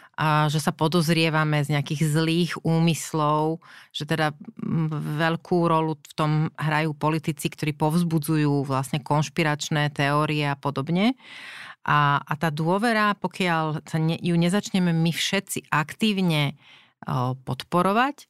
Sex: female